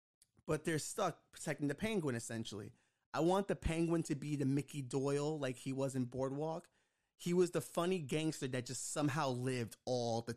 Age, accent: 30-49, American